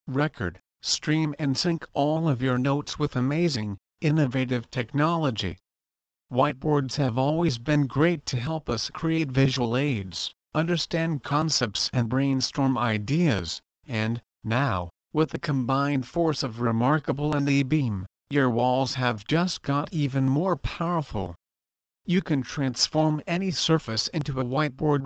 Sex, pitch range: male, 120-155 Hz